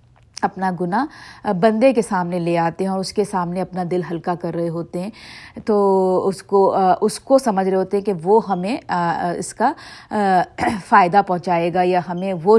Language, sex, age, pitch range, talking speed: Urdu, female, 50-69, 185-225 Hz, 185 wpm